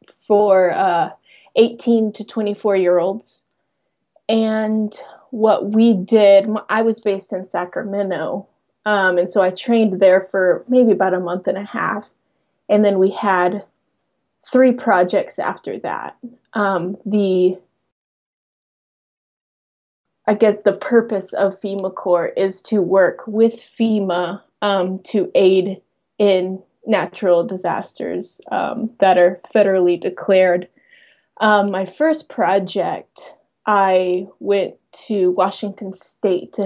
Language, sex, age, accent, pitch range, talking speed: English, female, 20-39, American, 185-210 Hz, 120 wpm